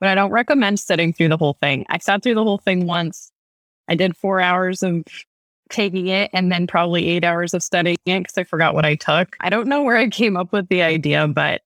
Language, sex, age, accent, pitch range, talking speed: English, female, 20-39, American, 155-195 Hz, 245 wpm